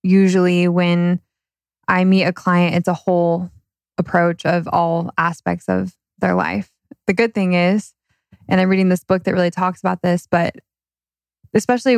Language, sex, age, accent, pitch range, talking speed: English, female, 20-39, American, 170-195 Hz, 160 wpm